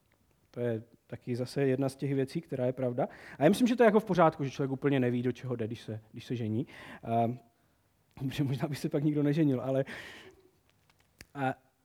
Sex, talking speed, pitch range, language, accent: male, 215 wpm, 125-160 Hz, Czech, native